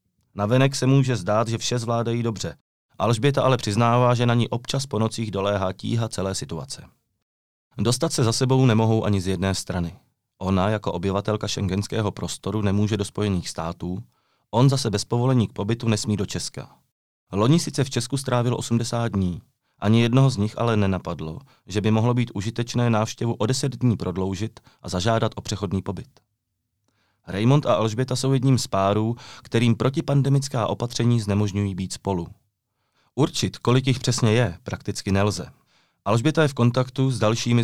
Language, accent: Czech, native